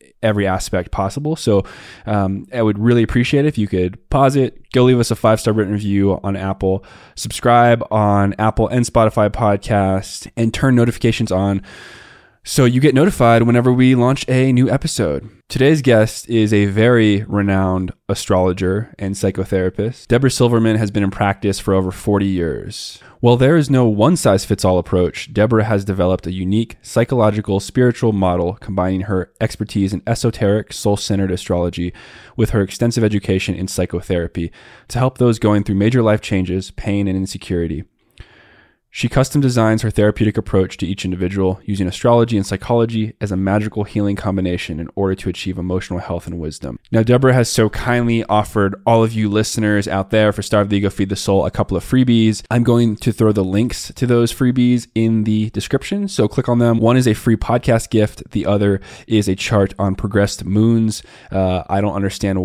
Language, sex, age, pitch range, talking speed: English, male, 20-39, 95-120 Hz, 180 wpm